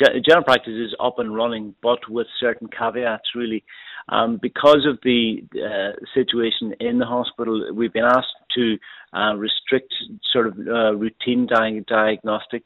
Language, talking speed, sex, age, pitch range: English, 150 wpm, male, 40-59, 110-125 Hz